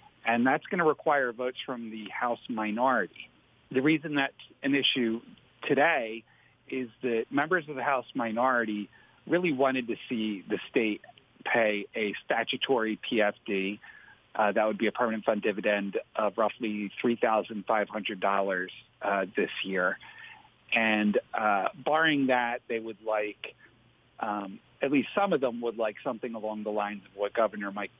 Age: 50-69